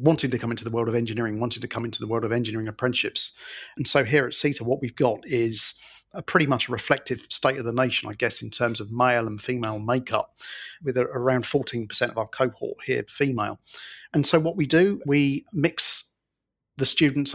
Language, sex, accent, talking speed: English, male, British, 210 wpm